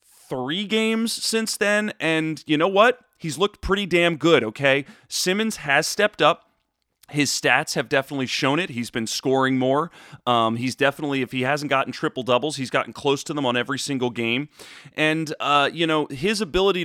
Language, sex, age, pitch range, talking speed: English, male, 30-49, 130-175 Hz, 185 wpm